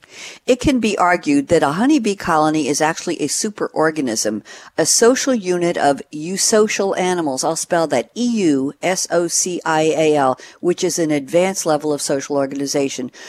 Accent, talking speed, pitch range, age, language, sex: American, 135 wpm, 150-200 Hz, 60-79, English, female